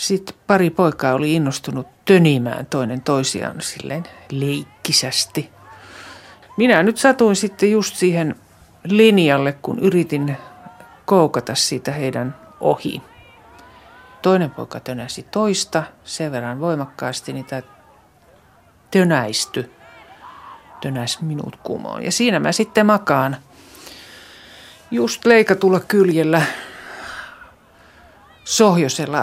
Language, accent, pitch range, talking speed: Finnish, native, 135-185 Hz, 90 wpm